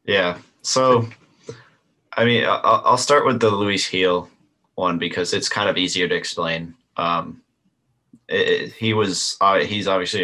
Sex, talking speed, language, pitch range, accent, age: male, 140 wpm, English, 90-115 Hz, American, 20-39